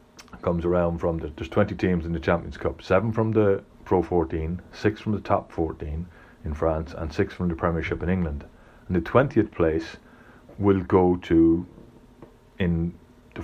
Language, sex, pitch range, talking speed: English, male, 85-105 Hz, 175 wpm